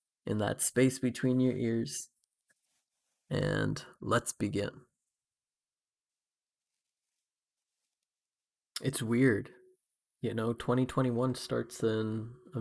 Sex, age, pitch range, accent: male, 20-39, 105-120 Hz, American